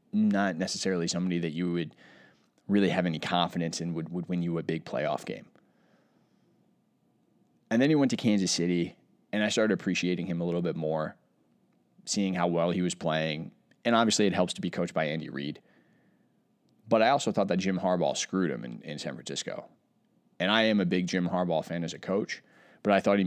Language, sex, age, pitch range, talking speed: English, male, 20-39, 85-105 Hz, 205 wpm